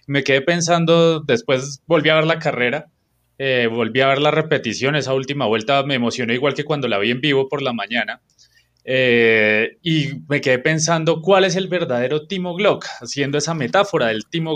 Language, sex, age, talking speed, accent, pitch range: Spanish, male, 20-39, 190 wpm, Colombian, 120-160 Hz